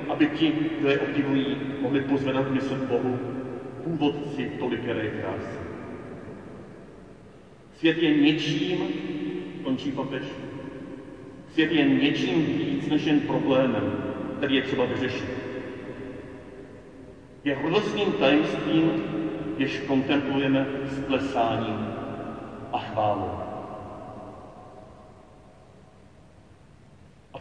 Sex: male